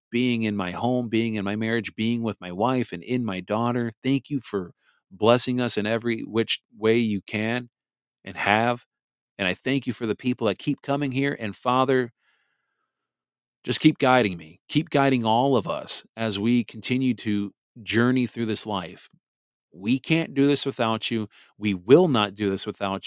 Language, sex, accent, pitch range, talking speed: English, male, American, 105-125 Hz, 185 wpm